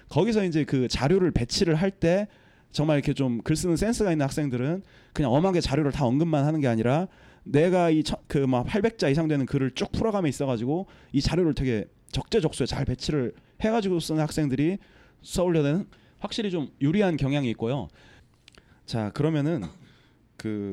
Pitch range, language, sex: 130-185 Hz, Korean, male